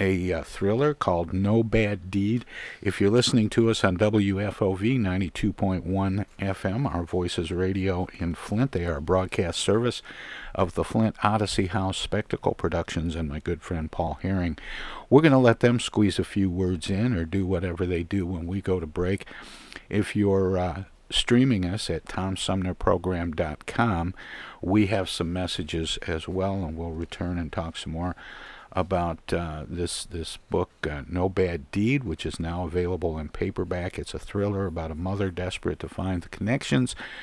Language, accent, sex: English, American, male